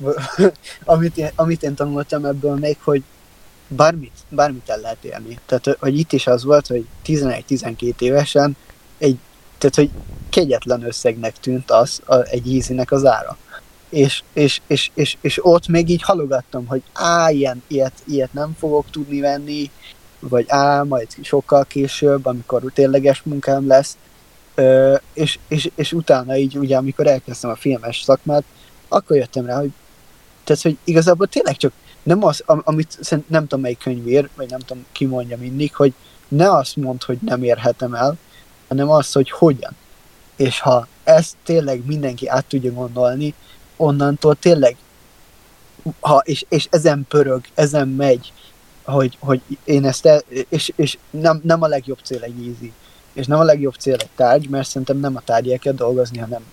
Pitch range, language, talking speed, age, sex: 125-150 Hz, Hungarian, 165 wpm, 20-39, male